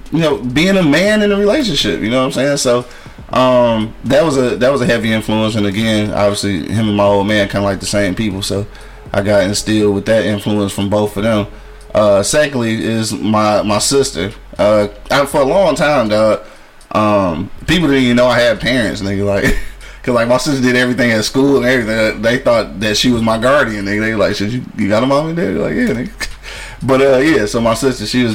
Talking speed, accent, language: 225 wpm, American, English